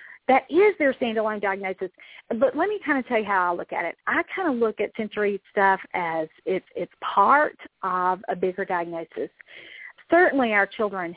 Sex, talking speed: female, 190 wpm